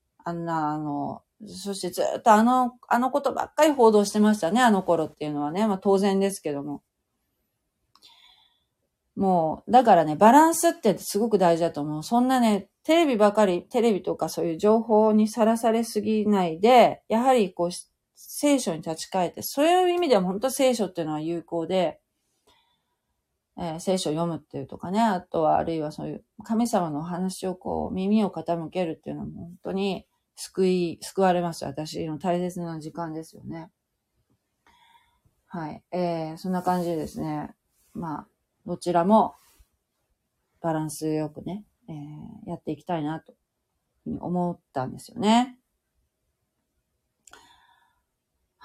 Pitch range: 165-220 Hz